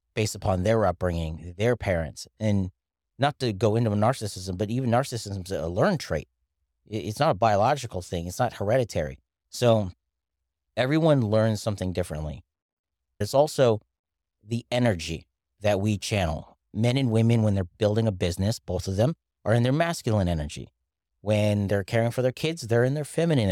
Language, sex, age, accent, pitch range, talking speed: English, male, 40-59, American, 90-120 Hz, 165 wpm